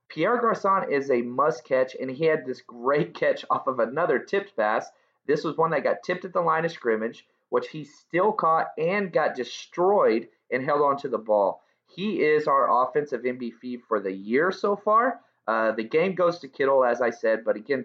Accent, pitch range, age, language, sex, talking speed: American, 125-180 Hz, 30-49, English, male, 205 wpm